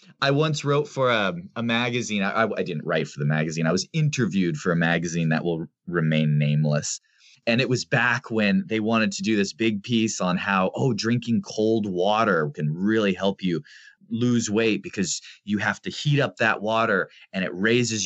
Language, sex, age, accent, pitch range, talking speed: English, male, 30-49, American, 110-165 Hz, 200 wpm